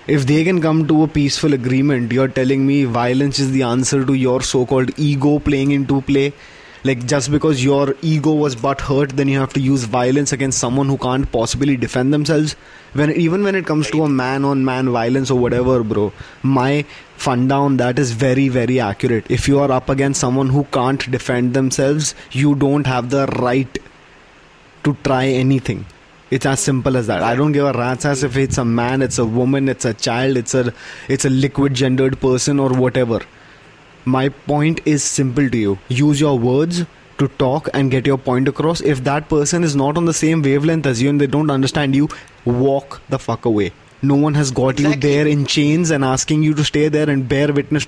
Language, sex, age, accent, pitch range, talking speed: English, male, 20-39, Indian, 130-145 Hz, 205 wpm